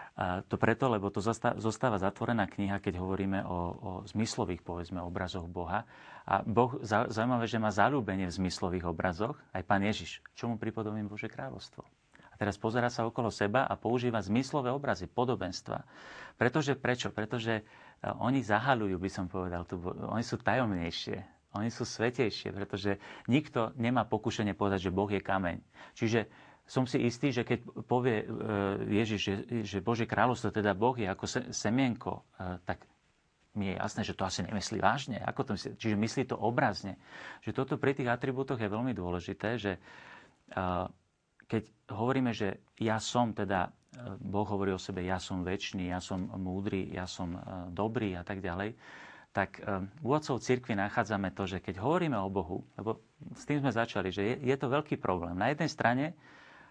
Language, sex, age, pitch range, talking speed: Slovak, male, 40-59, 95-120 Hz, 160 wpm